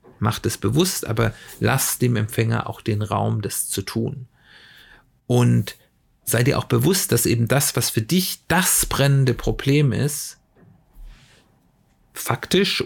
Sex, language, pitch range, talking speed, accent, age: male, German, 110-135 Hz, 135 wpm, German, 40-59